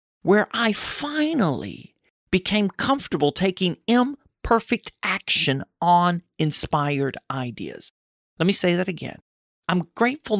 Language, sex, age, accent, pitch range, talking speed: English, male, 50-69, American, 155-240 Hz, 105 wpm